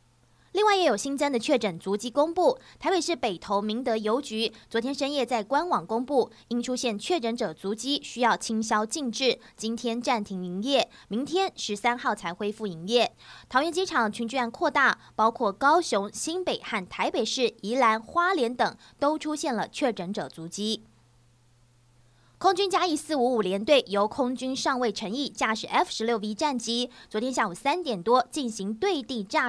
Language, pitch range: Chinese, 210-275 Hz